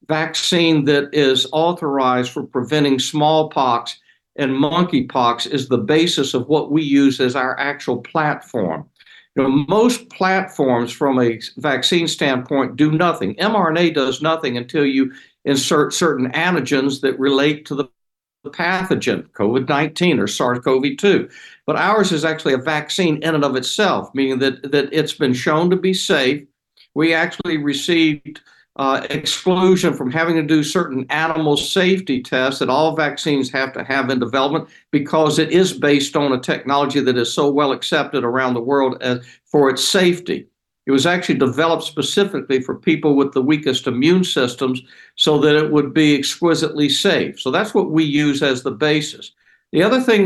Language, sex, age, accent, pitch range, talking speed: English, male, 60-79, American, 135-160 Hz, 160 wpm